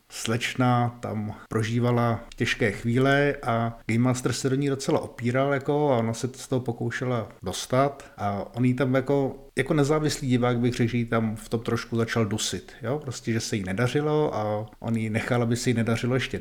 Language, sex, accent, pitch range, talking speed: Czech, male, native, 115-140 Hz, 200 wpm